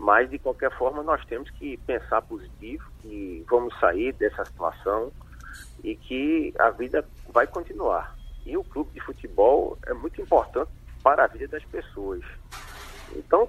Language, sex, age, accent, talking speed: Portuguese, male, 50-69, Brazilian, 150 wpm